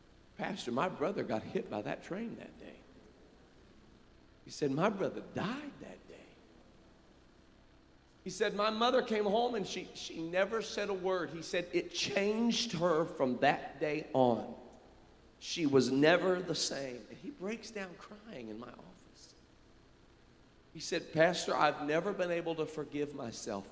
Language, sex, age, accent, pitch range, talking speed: English, male, 40-59, American, 120-195 Hz, 155 wpm